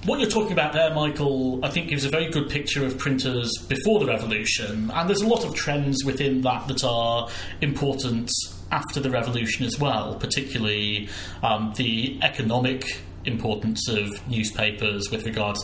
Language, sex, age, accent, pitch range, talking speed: English, male, 30-49, British, 105-135 Hz, 165 wpm